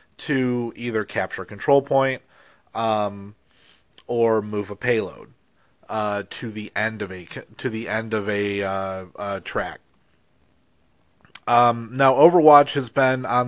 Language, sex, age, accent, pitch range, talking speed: English, male, 30-49, American, 105-140 Hz, 140 wpm